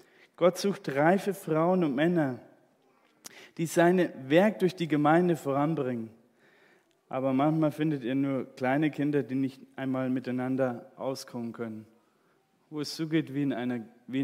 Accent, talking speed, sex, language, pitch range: German, 130 wpm, male, German, 135-175 Hz